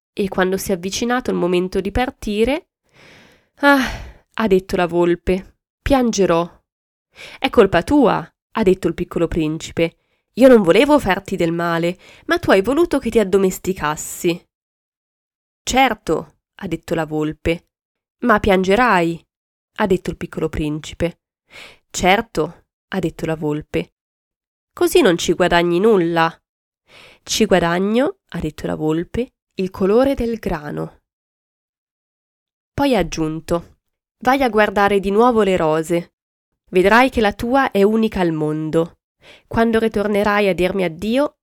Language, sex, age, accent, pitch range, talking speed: Italian, female, 20-39, native, 170-230 Hz, 130 wpm